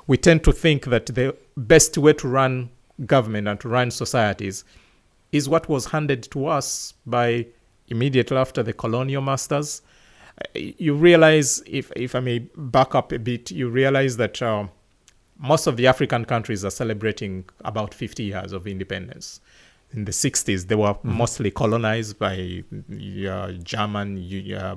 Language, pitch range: English, 100-130 Hz